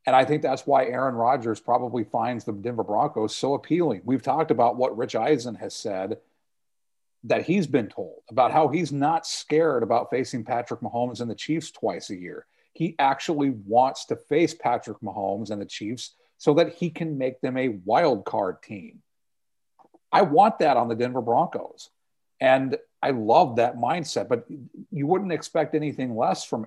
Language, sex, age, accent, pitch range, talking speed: English, male, 40-59, American, 120-155 Hz, 180 wpm